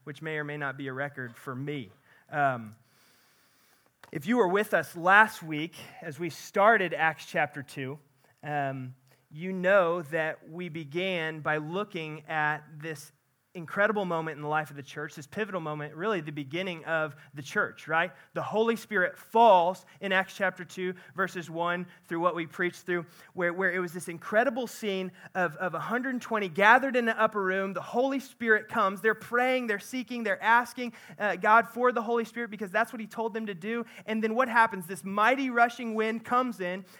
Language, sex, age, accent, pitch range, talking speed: English, male, 30-49, American, 170-235 Hz, 190 wpm